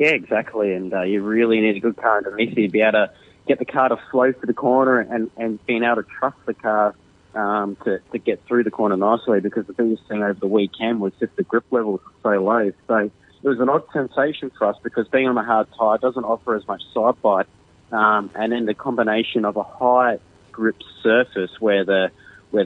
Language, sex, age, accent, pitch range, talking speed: English, male, 30-49, Australian, 100-115 Hz, 235 wpm